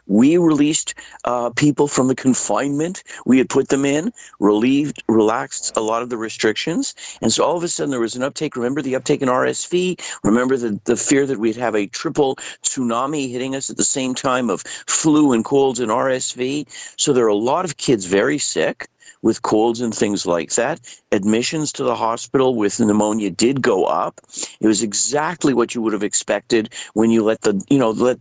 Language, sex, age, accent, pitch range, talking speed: English, male, 50-69, American, 110-140 Hz, 200 wpm